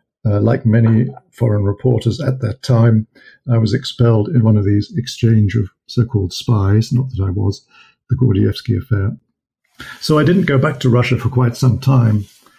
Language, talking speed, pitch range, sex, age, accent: English, 175 wpm, 105-125 Hz, male, 50-69, British